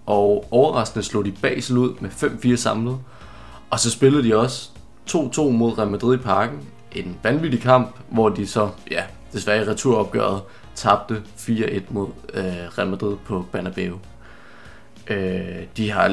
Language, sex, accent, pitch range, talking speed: Danish, male, native, 100-125 Hz, 155 wpm